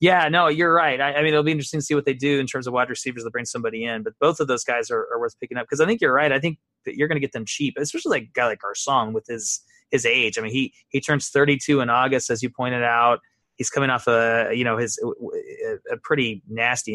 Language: English